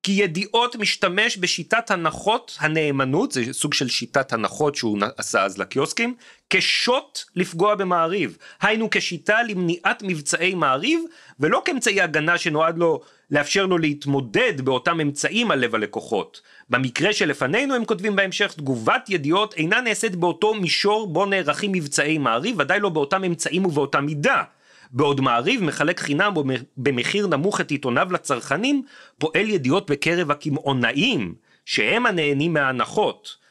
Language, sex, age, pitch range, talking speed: Hebrew, male, 40-59, 140-195 Hz, 130 wpm